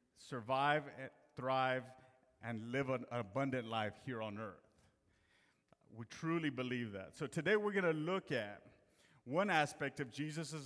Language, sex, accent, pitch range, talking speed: English, male, American, 125-150 Hz, 145 wpm